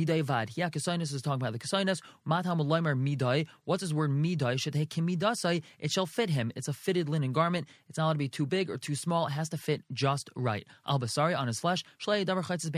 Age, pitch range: 20-39, 145-180 Hz